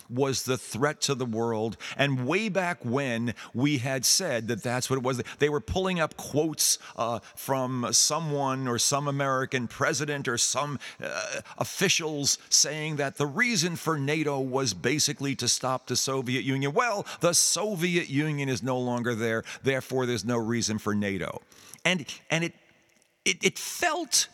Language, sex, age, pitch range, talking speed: English, male, 50-69, 120-160 Hz, 165 wpm